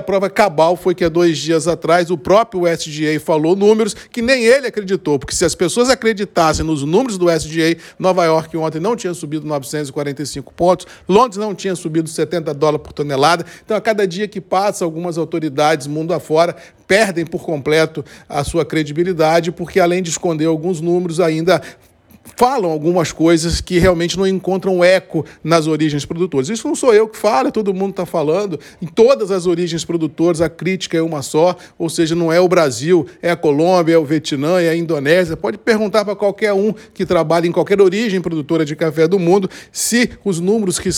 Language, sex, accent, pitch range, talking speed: Portuguese, male, Brazilian, 160-185 Hz, 190 wpm